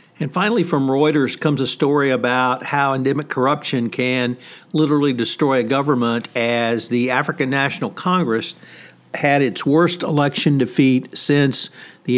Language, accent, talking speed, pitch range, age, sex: English, American, 140 wpm, 115-135 Hz, 60-79, male